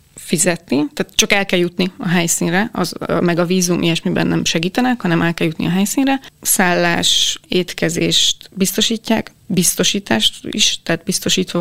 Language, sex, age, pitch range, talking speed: Hungarian, female, 20-39, 170-190 Hz, 145 wpm